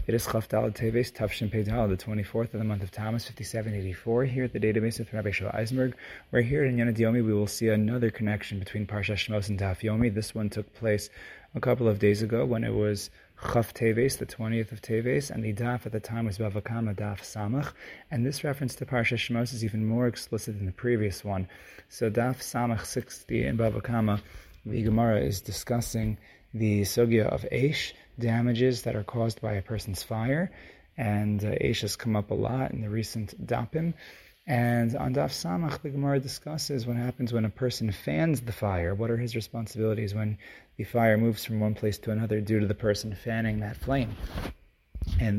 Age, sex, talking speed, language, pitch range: 20-39, male, 195 wpm, English, 105-120 Hz